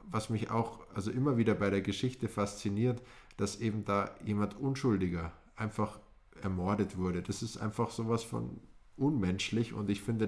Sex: male